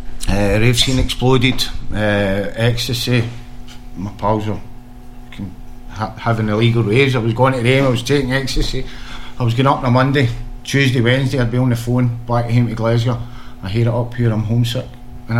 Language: English